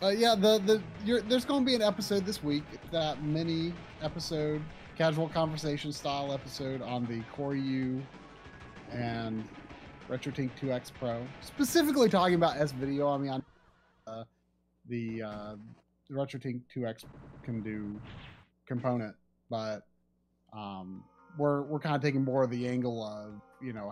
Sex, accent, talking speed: male, American, 145 wpm